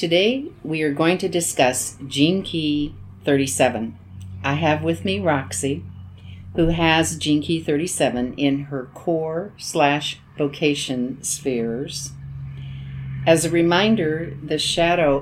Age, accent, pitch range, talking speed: 50-69, American, 130-155 Hz, 110 wpm